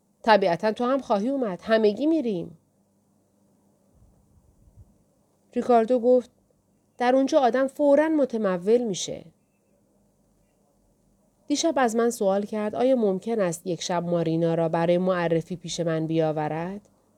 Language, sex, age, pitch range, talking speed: Persian, female, 30-49, 180-245 Hz, 110 wpm